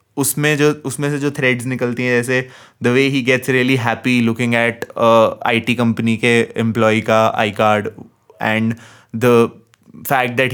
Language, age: English, 20-39